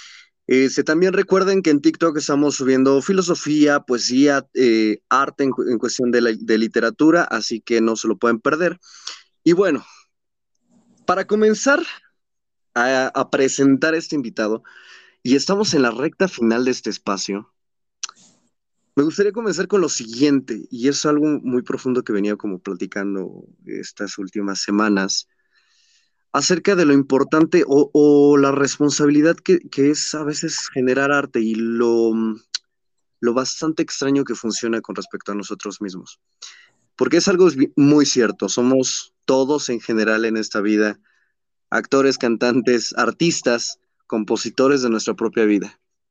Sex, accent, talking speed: male, Mexican, 145 wpm